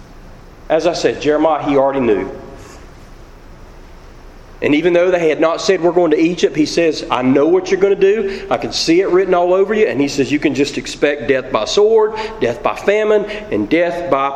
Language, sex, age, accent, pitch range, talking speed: English, male, 40-59, American, 135-215 Hz, 215 wpm